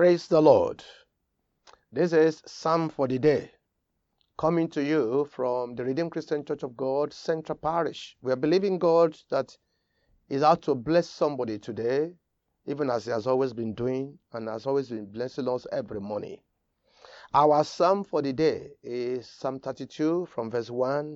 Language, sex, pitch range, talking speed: English, male, 125-160 Hz, 165 wpm